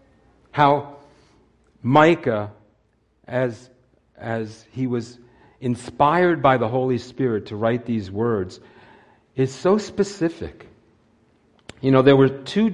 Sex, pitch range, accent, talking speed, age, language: male, 105-135 Hz, American, 110 wpm, 50-69, English